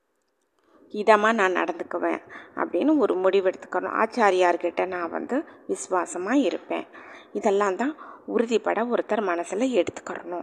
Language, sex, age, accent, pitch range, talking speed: Tamil, female, 20-39, native, 185-240 Hz, 105 wpm